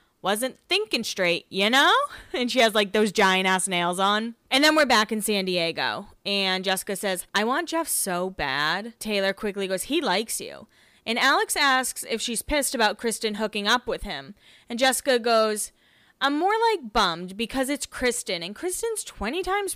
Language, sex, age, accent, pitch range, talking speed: English, female, 20-39, American, 195-275 Hz, 185 wpm